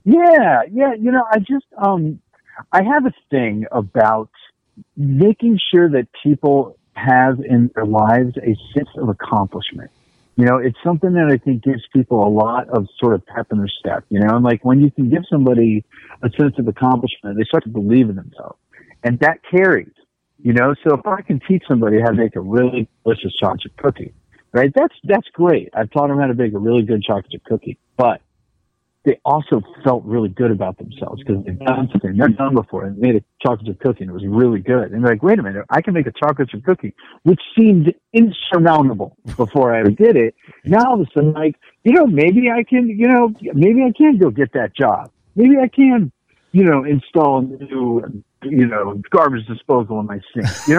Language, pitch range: English, 115-175 Hz